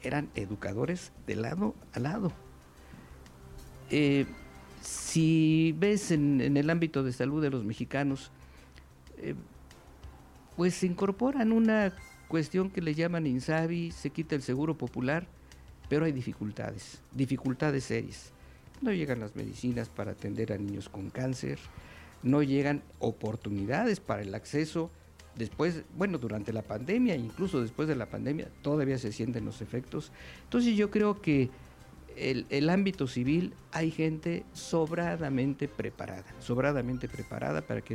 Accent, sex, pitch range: Mexican, male, 100-160 Hz